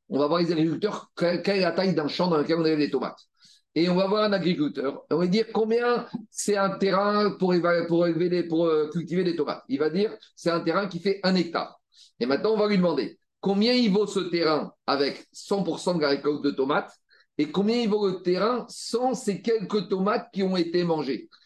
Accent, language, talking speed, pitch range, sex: French, French, 225 wpm, 165-205 Hz, male